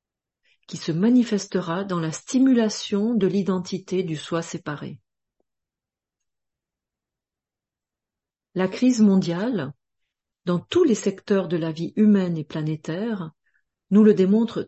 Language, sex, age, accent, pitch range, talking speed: French, female, 40-59, French, 170-220 Hz, 110 wpm